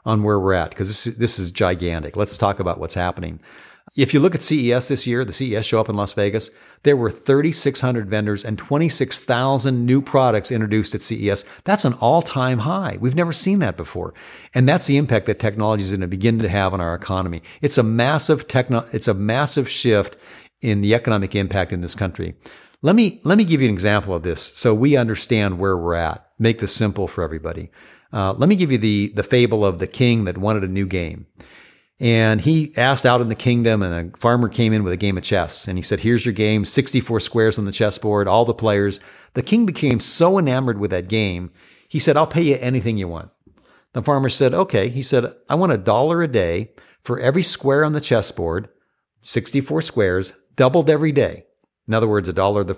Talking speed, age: 225 wpm, 50-69